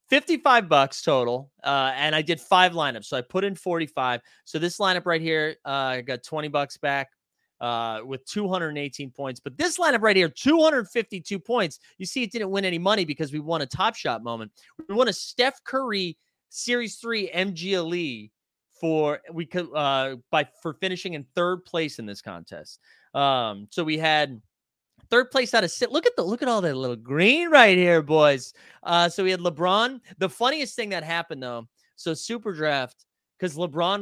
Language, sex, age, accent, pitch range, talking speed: English, male, 30-49, American, 145-200 Hz, 190 wpm